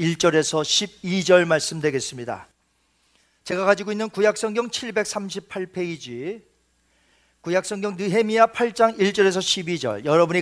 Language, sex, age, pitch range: Korean, male, 40-59, 160-210 Hz